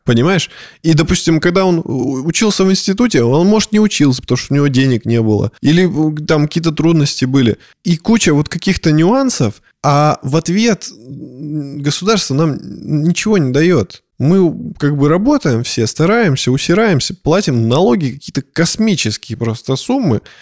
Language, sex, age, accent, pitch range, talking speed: Russian, male, 20-39, native, 130-180 Hz, 145 wpm